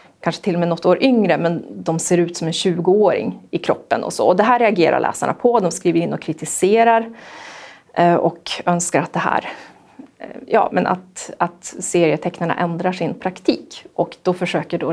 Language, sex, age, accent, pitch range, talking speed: Swedish, female, 30-49, native, 175-205 Hz, 185 wpm